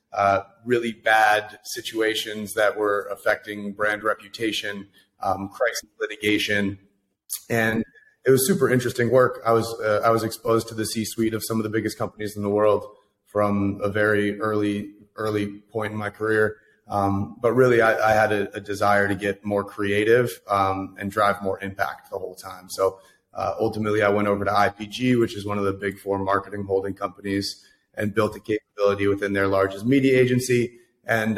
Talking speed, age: 180 wpm, 30-49